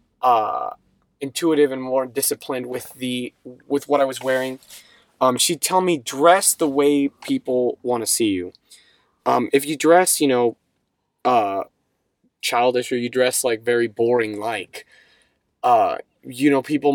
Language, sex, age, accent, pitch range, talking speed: English, male, 20-39, American, 120-145 Hz, 150 wpm